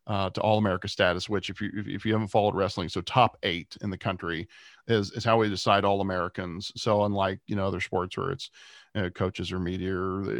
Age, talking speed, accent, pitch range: 40-59, 230 wpm, American, 95-120 Hz